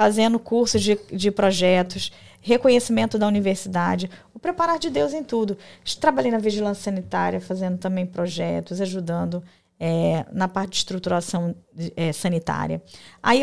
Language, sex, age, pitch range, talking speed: Portuguese, female, 20-39, 180-230 Hz, 135 wpm